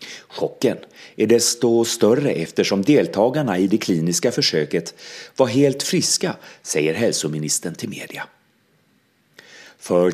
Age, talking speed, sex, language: 30-49, 105 wpm, male, Swedish